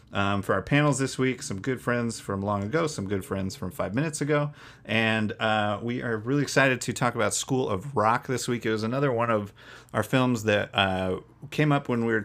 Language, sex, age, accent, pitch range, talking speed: English, male, 30-49, American, 105-135 Hz, 230 wpm